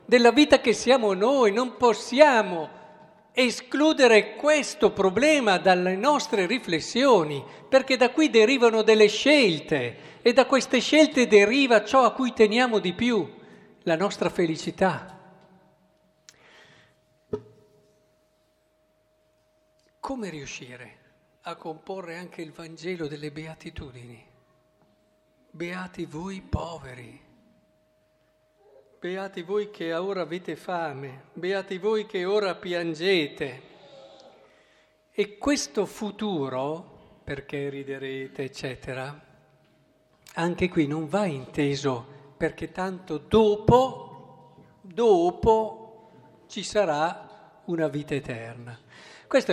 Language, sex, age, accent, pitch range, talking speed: Italian, male, 50-69, native, 155-215 Hz, 95 wpm